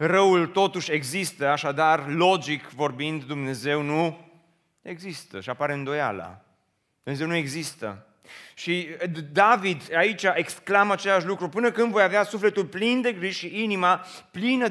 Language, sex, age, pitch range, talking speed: Romanian, male, 30-49, 170-225 Hz, 130 wpm